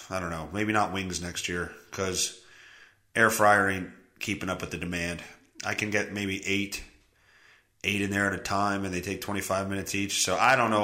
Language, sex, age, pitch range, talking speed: English, male, 30-49, 95-125 Hz, 210 wpm